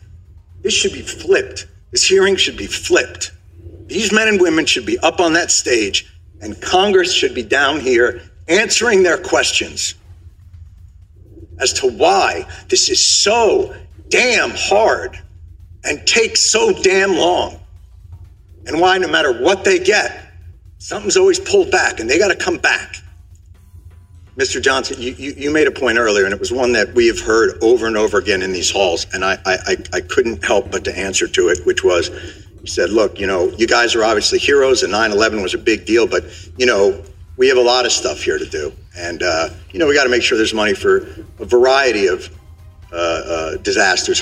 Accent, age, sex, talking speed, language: American, 50-69, male, 190 wpm, English